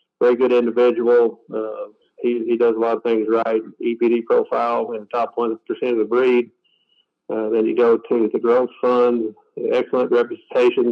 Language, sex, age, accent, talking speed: English, male, 40-59, American, 175 wpm